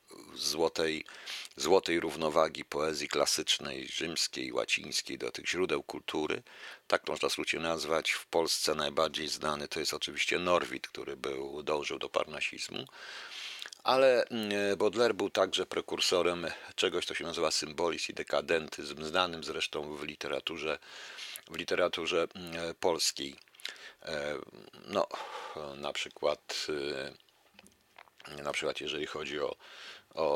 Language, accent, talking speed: Polish, native, 110 wpm